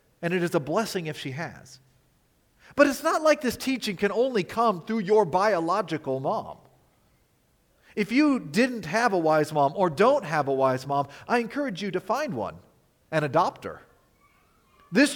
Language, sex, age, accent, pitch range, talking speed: English, male, 40-59, American, 135-210 Hz, 170 wpm